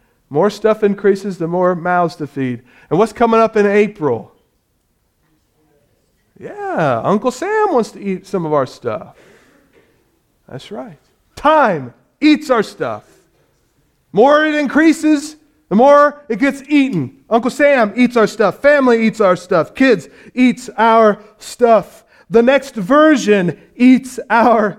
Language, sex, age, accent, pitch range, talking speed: English, male, 40-59, American, 195-245 Hz, 135 wpm